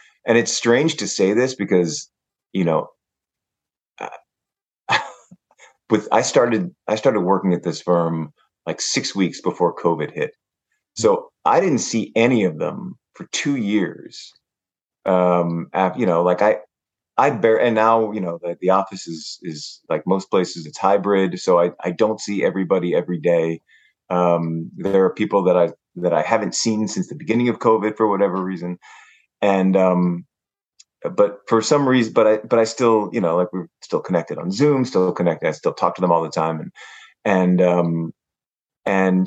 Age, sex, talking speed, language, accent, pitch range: 30-49, male, 175 wpm, English, American, 90-110 Hz